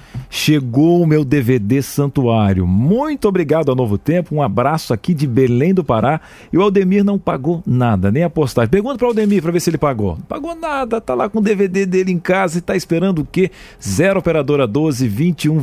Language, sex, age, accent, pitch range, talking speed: Portuguese, male, 40-59, Brazilian, 115-150 Hz, 205 wpm